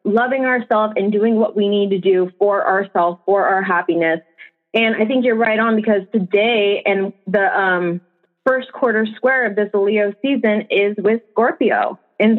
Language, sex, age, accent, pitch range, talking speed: English, female, 20-39, American, 215-270 Hz, 175 wpm